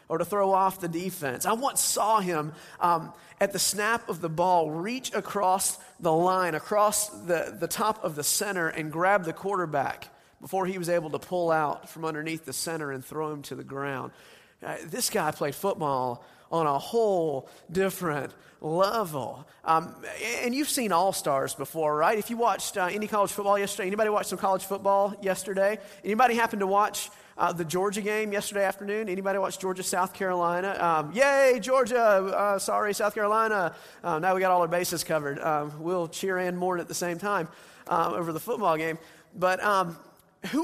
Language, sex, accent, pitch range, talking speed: English, male, American, 170-220 Hz, 190 wpm